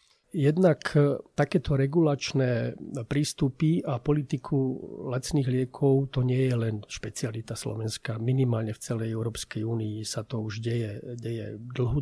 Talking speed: 125 wpm